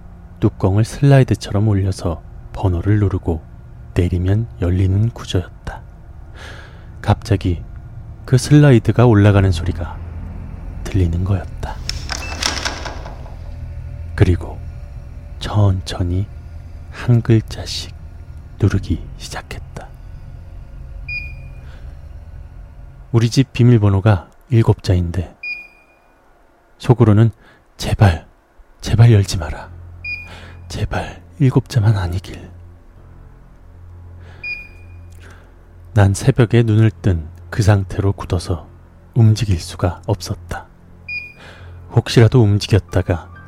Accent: native